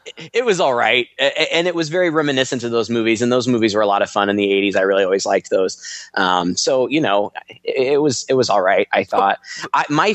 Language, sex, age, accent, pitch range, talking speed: English, male, 20-39, American, 105-130 Hz, 250 wpm